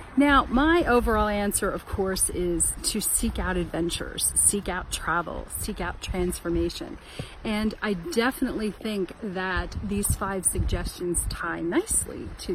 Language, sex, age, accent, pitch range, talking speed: English, female, 40-59, American, 185-255 Hz, 135 wpm